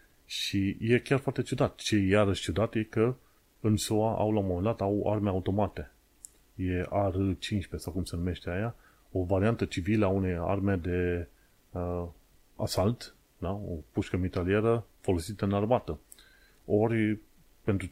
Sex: male